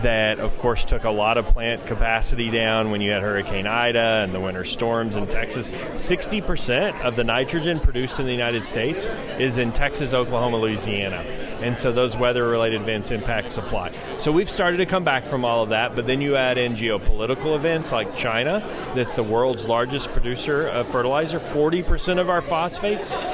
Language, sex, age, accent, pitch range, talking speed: English, male, 30-49, American, 115-135 Hz, 185 wpm